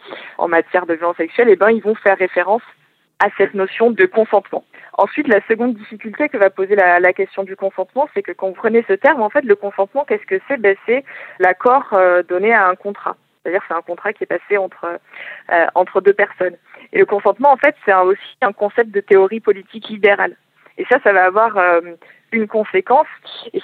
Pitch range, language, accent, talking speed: 185-235 Hz, French, French, 215 wpm